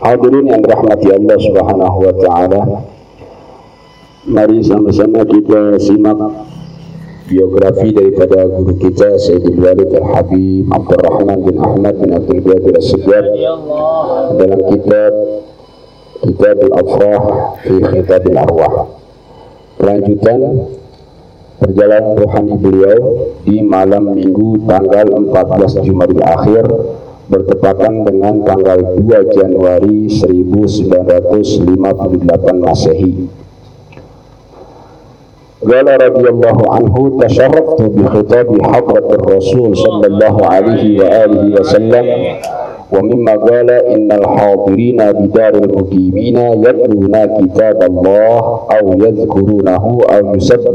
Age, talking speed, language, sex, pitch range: 50-69, 90 wpm, Indonesian, male, 95-125 Hz